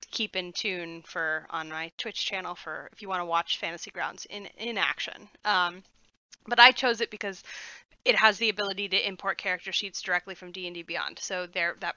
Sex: female